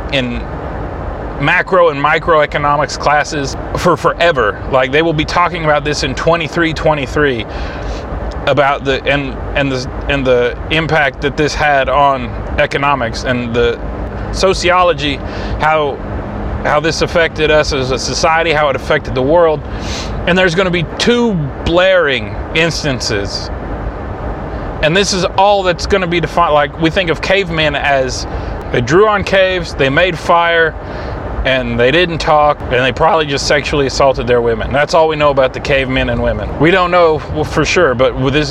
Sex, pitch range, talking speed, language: male, 120-160 Hz, 160 wpm, English